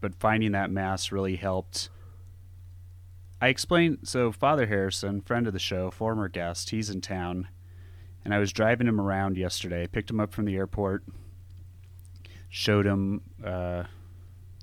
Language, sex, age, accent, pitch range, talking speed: English, male, 30-49, American, 90-105 Hz, 150 wpm